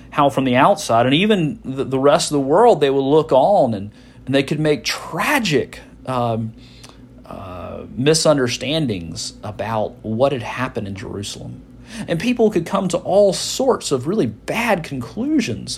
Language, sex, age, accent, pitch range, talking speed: English, male, 40-59, American, 110-145 Hz, 150 wpm